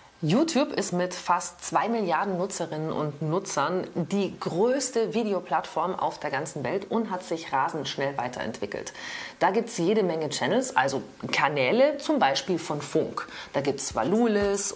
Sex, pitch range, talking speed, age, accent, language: female, 160-225 Hz, 155 wpm, 30-49, German, German